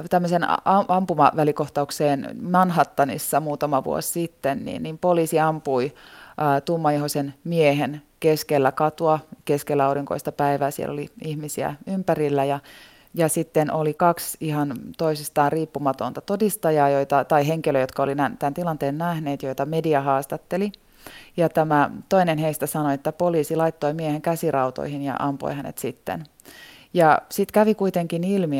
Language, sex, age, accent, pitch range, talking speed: Finnish, female, 20-39, native, 145-170 Hz, 130 wpm